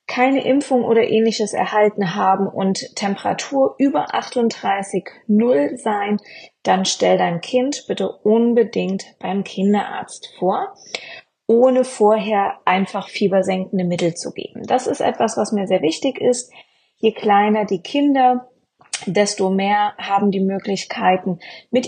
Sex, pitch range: female, 190-235 Hz